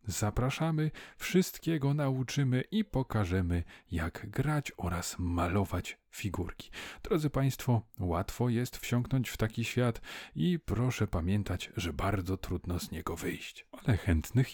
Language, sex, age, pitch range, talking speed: Polish, male, 40-59, 90-135 Hz, 120 wpm